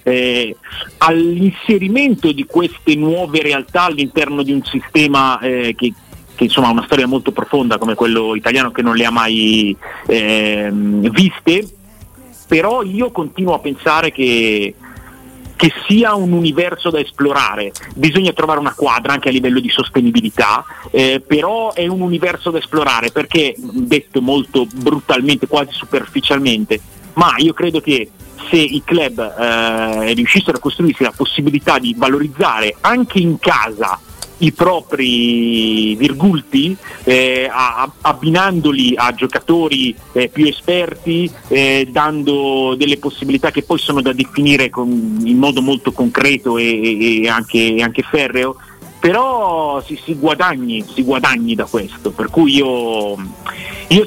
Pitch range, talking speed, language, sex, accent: 120-165 Hz, 130 wpm, Italian, male, native